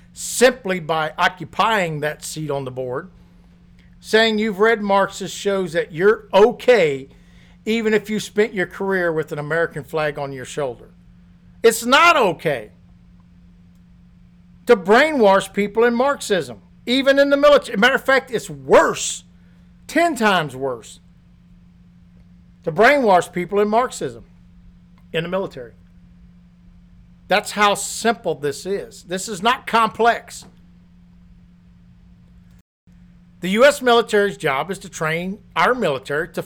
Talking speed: 130 wpm